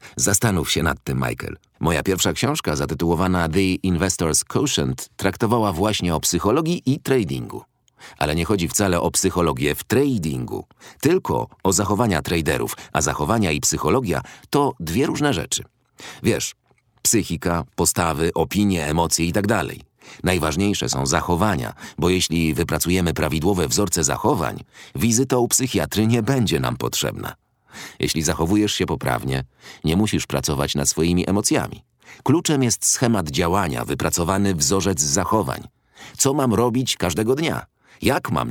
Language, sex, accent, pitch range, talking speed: Polish, male, native, 80-110 Hz, 130 wpm